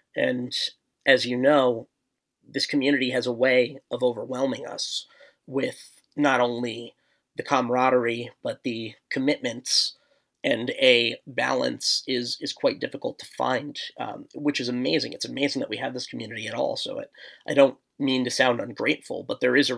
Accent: American